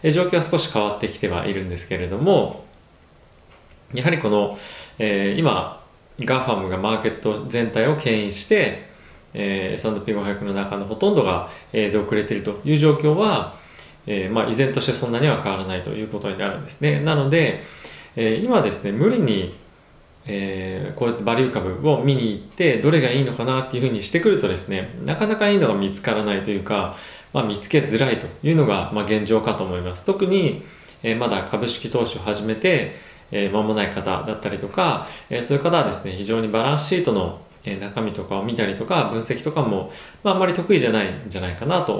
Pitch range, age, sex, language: 100-150 Hz, 20-39, male, Japanese